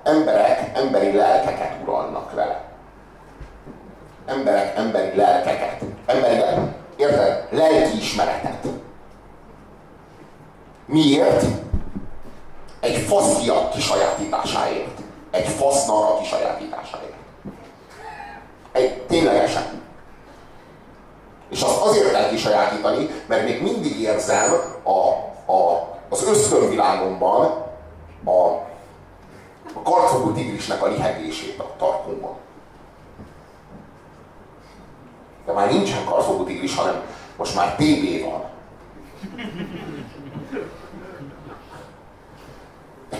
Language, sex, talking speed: Hungarian, male, 70 wpm